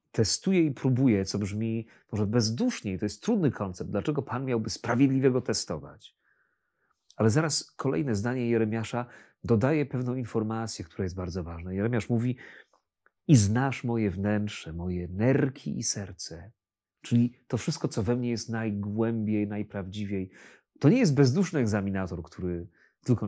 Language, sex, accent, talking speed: Polish, male, native, 140 wpm